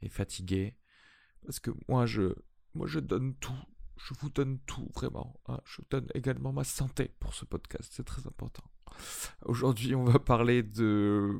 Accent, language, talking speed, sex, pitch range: French, French, 165 wpm, male, 105-120 Hz